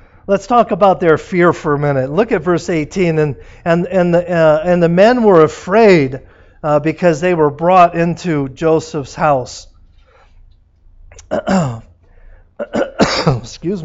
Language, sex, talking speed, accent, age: English, male, 120 wpm, American, 40-59